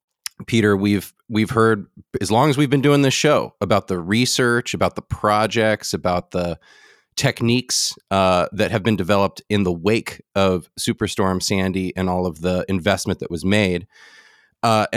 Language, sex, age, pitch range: English, male, 30-49, 95-120 Hz